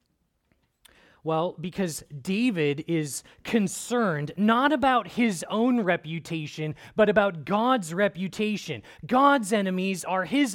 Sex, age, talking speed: male, 30-49, 100 wpm